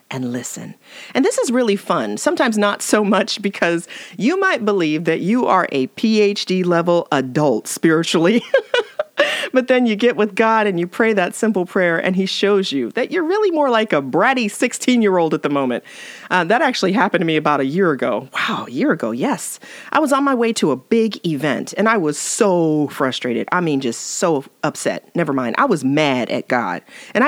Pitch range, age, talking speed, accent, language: 170-275 Hz, 40-59, 200 wpm, American, English